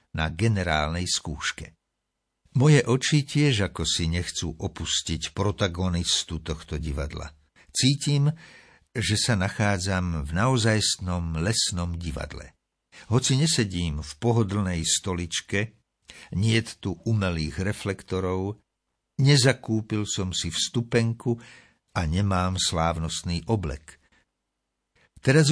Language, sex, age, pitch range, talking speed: Slovak, male, 60-79, 80-115 Hz, 90 wpm